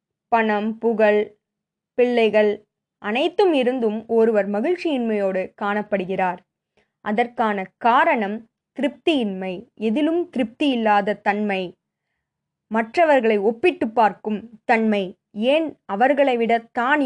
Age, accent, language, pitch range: 20-39, native, Tamil, 205-265 Hz